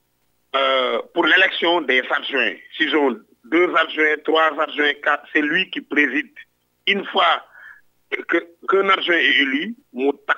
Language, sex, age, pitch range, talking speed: French, male, 50-69, 130-220 Hz, 125 wpm